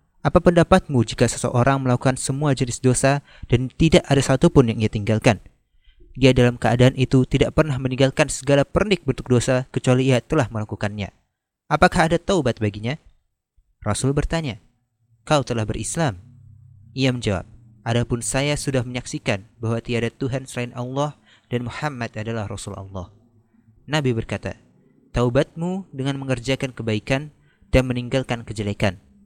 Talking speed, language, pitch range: 135 wpm, Indonesian, 110-140 Hz